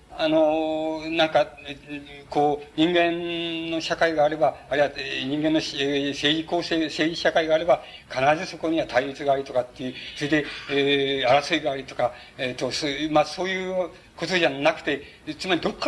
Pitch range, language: 140-170 Hz, Japanese